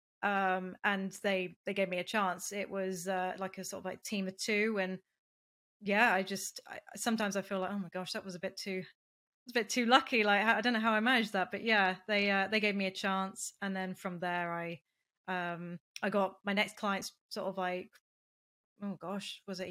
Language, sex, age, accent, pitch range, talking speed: English, female, 20-39, British, 180-210 Hz, 230 wpm